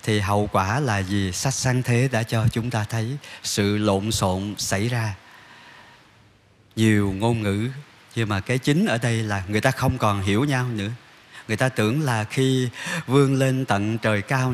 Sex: male